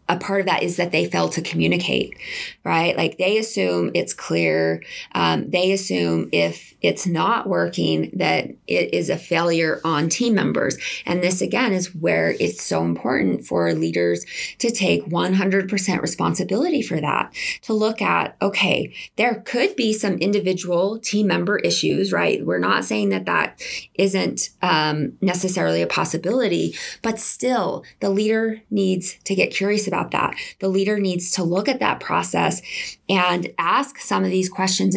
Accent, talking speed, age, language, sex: American, 160 wpm, 20-39, English, female